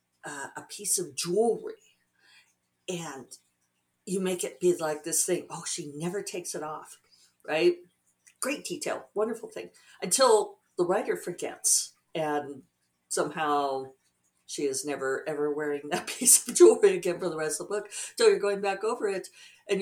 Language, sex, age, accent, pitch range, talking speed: English, female, 50-69, American, 145-195 Hz, 160 wpm